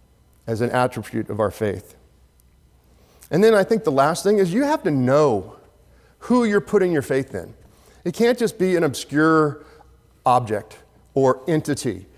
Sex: male